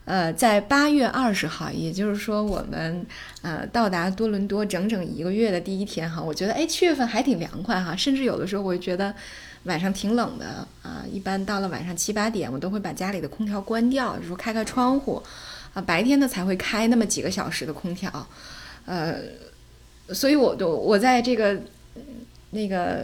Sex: female